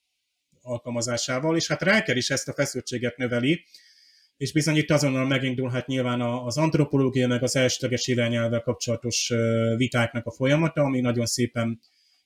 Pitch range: 120-145 Hz